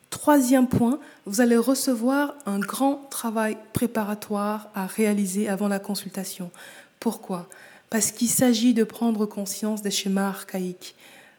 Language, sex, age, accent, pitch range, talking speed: French, female, 20-39, French, 195-230 Hz, 125 wpm